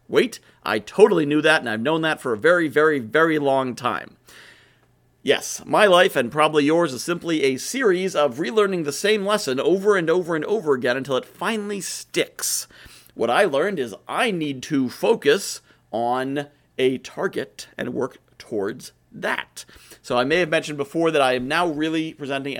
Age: 40-59